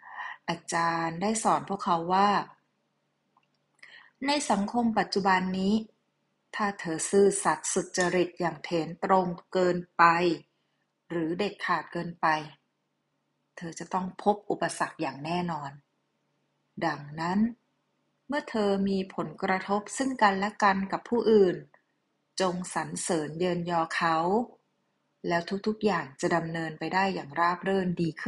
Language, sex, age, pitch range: Thai, female, 30-49, 170-210 Hz